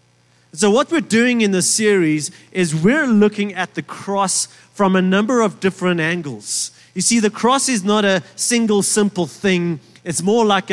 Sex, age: male, 30-49